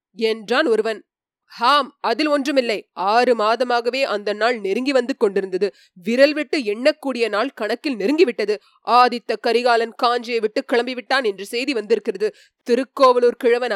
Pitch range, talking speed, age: 235-315 Hz, 120 wpm, 20-39